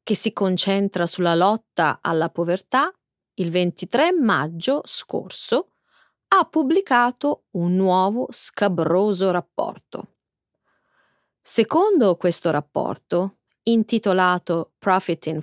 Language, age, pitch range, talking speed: Italian, 30-49, 175-285 Hz, 85 wpm